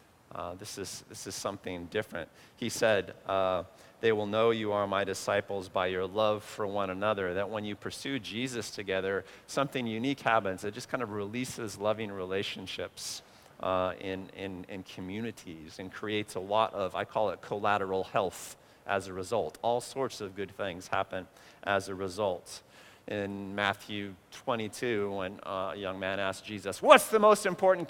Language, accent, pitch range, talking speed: English, American, 95-115 Hz, 170 wpm